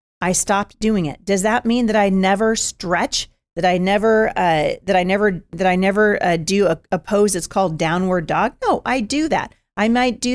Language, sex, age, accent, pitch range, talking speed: English, female, 40-59, American, 180-230 Hz, 215 wpm